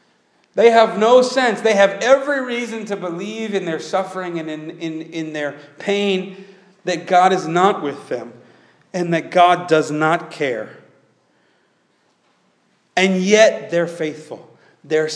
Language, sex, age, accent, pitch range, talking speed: English, male, 40-59, American, 155-205 Hz, 140 wpm